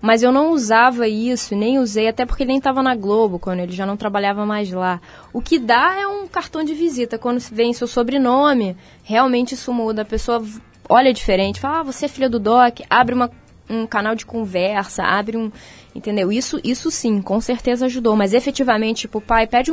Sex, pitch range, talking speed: female, 205-245 Hz, 205 wpm